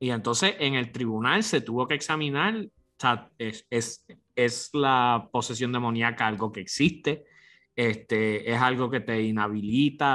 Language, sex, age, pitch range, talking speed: English, male, 30-49, 105-150 Hz, 155 wpm